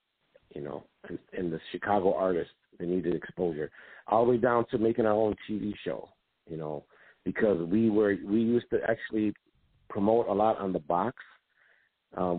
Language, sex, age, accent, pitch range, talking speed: English, male, 50-69, American, 100-120 Hz, 170 wpm